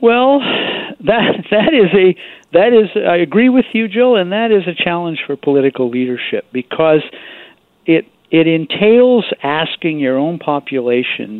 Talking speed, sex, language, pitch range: 145 wpm, male, English, 135-195 Hz